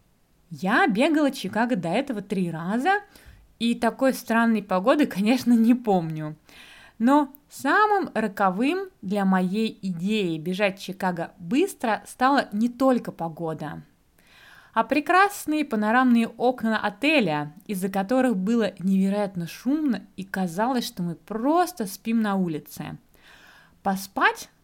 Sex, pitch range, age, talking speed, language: female, 185-260 Hz, 20-39, 110 wpm, Russian